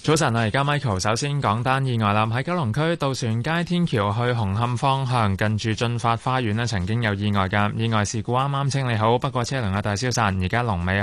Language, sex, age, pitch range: Chinese, male, 20-39, 105-140 Hz